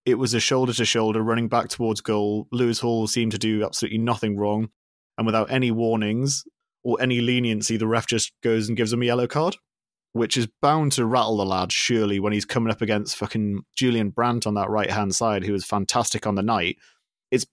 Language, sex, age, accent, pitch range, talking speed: English, male, 30-49, British, 105-115 Hz, 205 wpm